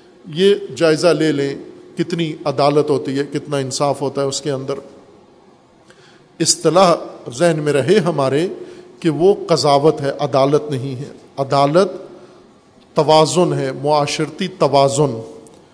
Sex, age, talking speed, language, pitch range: male, 50-69, 120 wpm, Urdu, 145-185 Hz